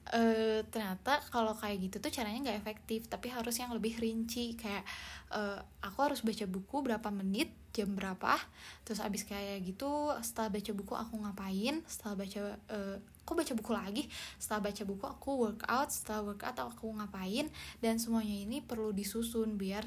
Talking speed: 170 wpm